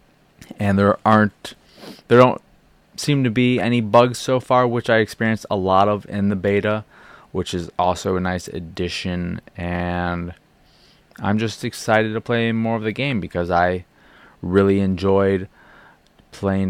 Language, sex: English, male